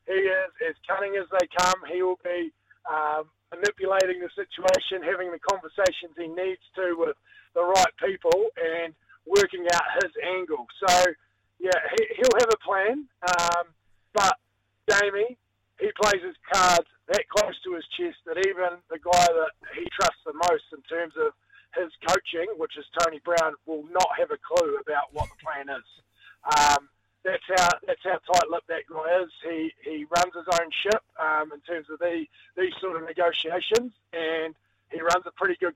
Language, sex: English, male